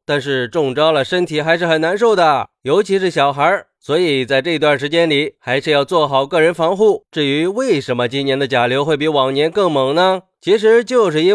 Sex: male